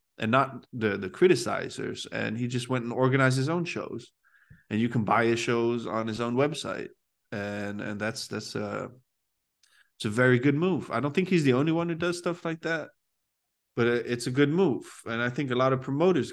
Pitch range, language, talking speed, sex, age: 110-140 Hz, English, 215 wpm, male, 20-39